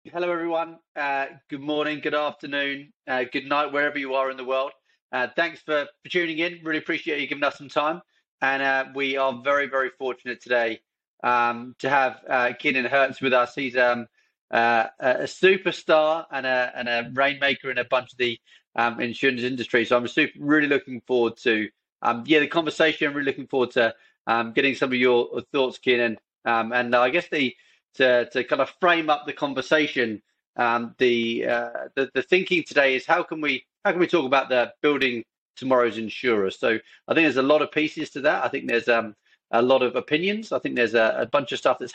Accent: British